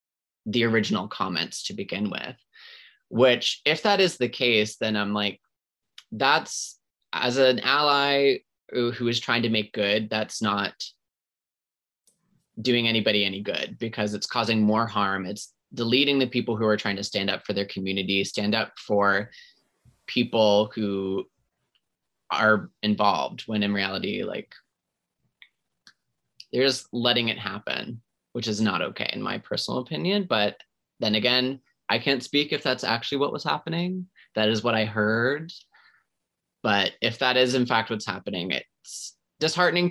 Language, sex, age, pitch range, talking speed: English, male, 20-39, 105-130 Hz, 150 wpm